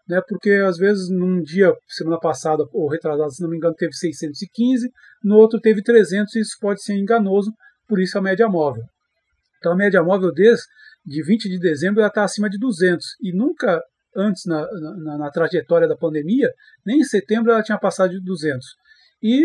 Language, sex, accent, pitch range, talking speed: Portuguese, male, Brazilian, 165-220 Hz, 190 wpm